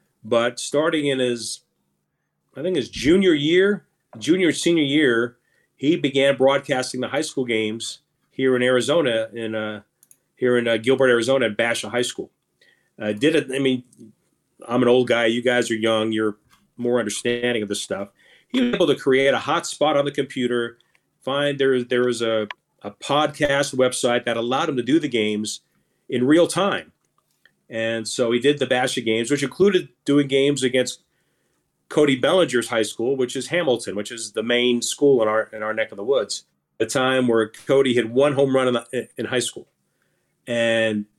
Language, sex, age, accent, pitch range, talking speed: English, male, 40-59, American, 115-140 Hz, 185 wpm